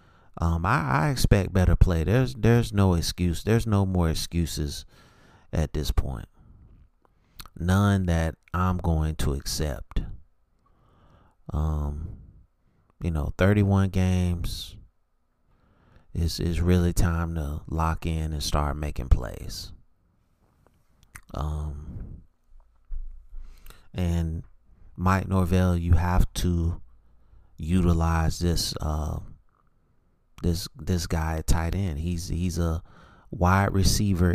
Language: English